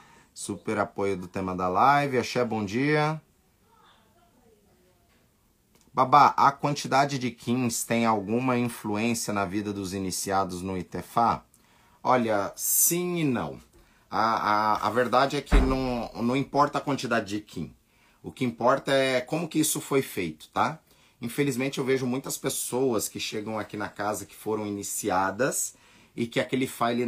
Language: Portuguese